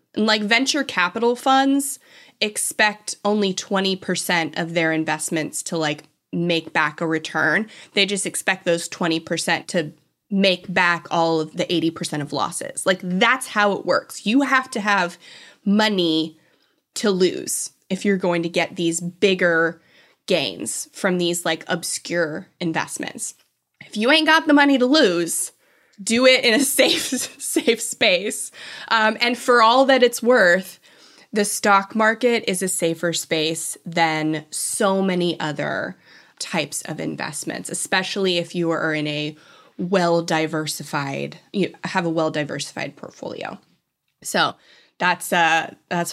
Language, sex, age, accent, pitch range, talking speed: English, female, 20-39, American, 165-220 Hz, 140 wpm